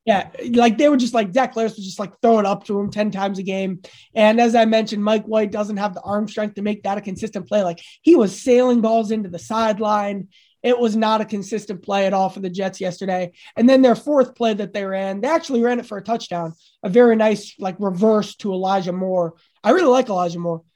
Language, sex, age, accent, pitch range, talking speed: English, male, 20-39, American, 185-225 Hz, 245 wpm